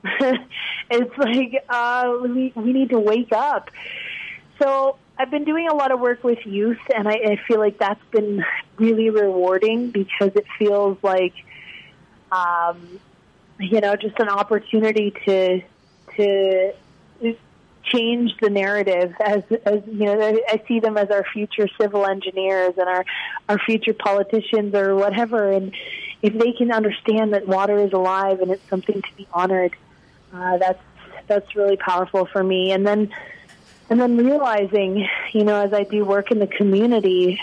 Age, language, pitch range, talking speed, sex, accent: 30-49, English, 195-220 Hz, 160 wpm, female, American